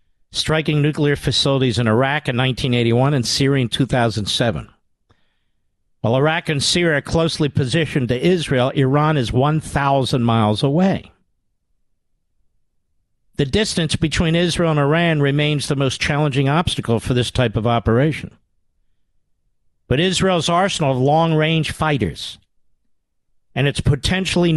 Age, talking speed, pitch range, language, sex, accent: 50-69, 120 wpm, 125-155 Hz, English, male, American